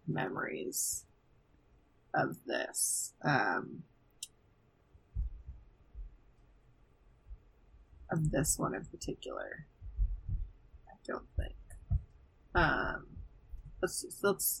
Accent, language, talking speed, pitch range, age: American, English, 60 wpm, 160-205 Hz, 20-39